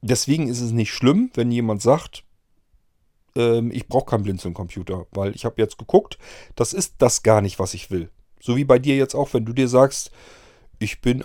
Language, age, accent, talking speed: German, 40-59, German, 205 wpm